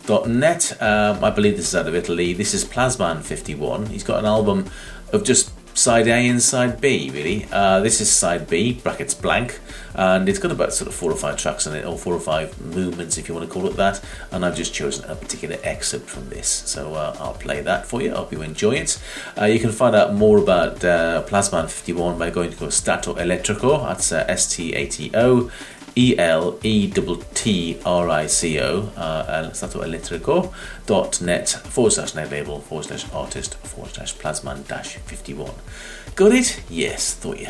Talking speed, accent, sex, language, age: 200 wpm, British, male, English, 40-59